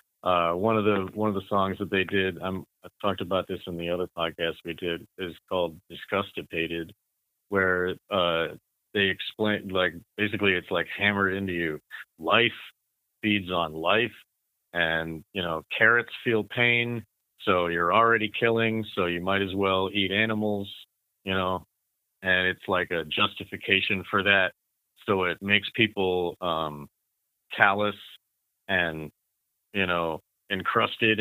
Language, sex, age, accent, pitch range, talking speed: English, male, 40-59, American, 90-105 Hz, 145 wpm